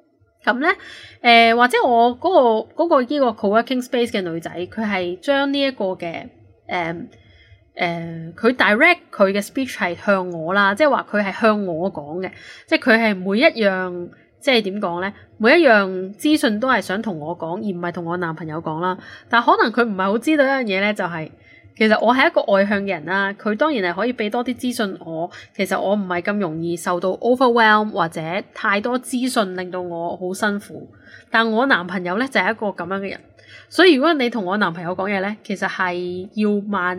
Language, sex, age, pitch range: Chinese, female, 10-29, 180-240 Hz